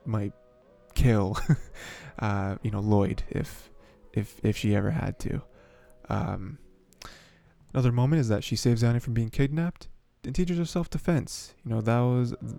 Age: 20-39